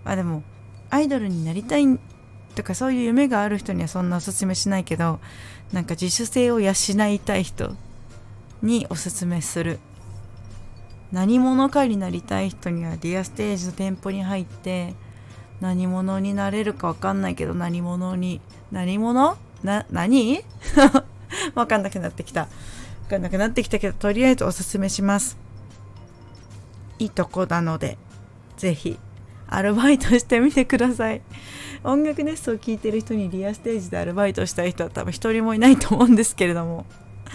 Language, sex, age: Japanese, female, 20-39